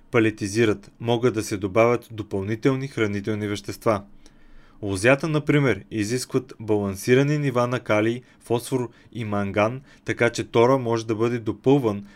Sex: male